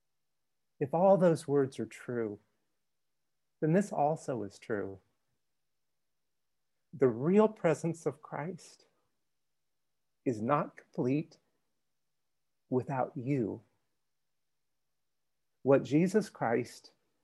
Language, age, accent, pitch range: English, 50-69, American, 120-155 Hz